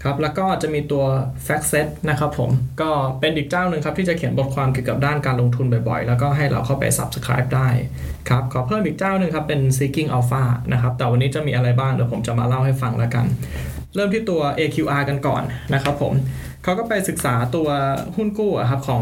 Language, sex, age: Thai, male, 20-39